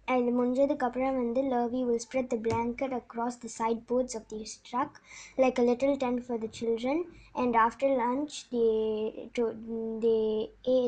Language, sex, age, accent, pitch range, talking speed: Tamil, male, 20-39, native, 225-265 Hz, 160 wpm